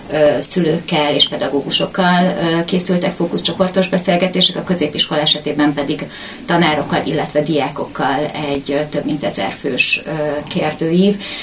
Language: Hungarian